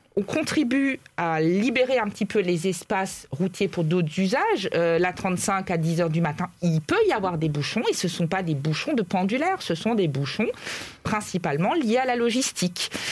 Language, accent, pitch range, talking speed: French, French, 195-245 Hz, 200 wpm